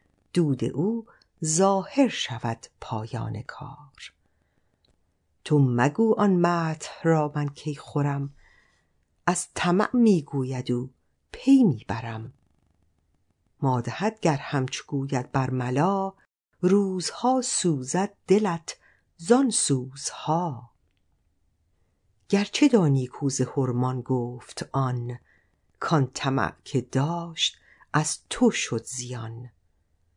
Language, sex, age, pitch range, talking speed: Persian, female, 50-69, 120-170 Hz, 90 wpm